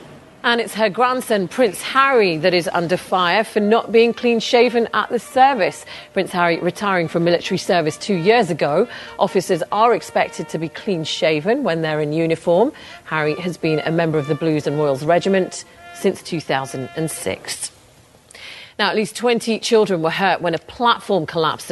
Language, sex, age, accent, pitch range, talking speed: English, female, 40-59, British, 170-230 Hz, 165 wpm